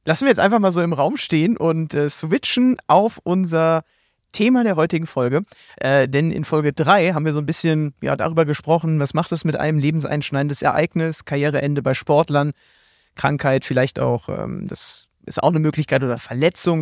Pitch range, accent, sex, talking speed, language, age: 145-175 Hz, German, male, 185 wpm, German, 30-49